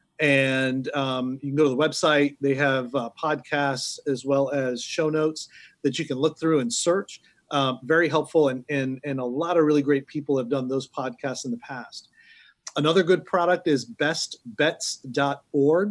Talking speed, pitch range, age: 180 wpm, 135-160 Hz, 30-49